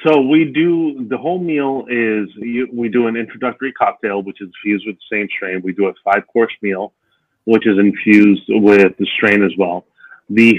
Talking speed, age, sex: 185 wpm, 30-49, male